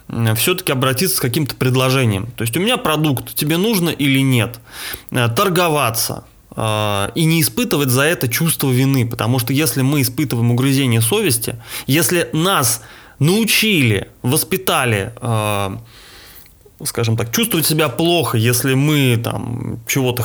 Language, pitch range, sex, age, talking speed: Russian, 115-150 Hz, male, 20-39, 120 wpm